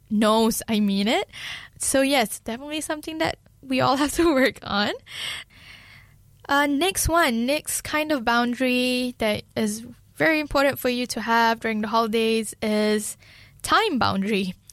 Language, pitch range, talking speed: English, 215-265 Hz, 145 wpm